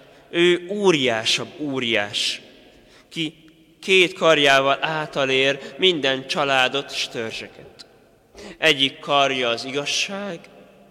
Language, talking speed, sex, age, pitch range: Hungarian, 85 wpm, male, 20-39, 130-155 Hz